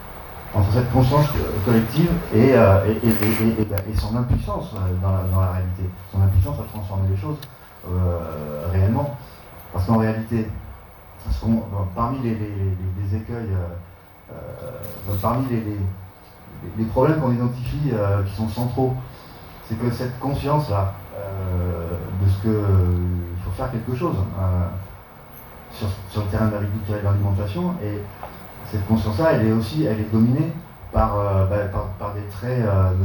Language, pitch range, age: French, 95-115 Hz, 30-49